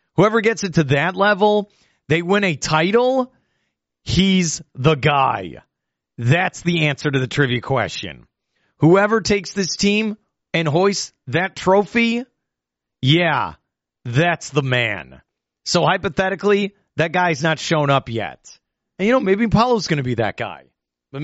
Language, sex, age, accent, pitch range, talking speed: English, male, 40-59, American, 130-205 Hz, 145 wpm